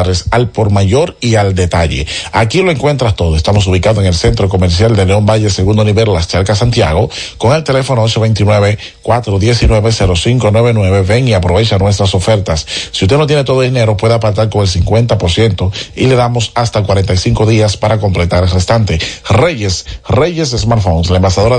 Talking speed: 165 wpm